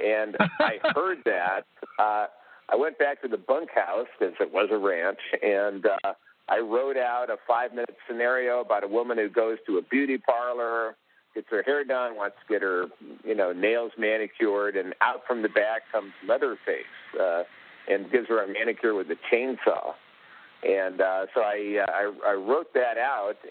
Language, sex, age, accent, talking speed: English, male, 50-69, American, 180 wpm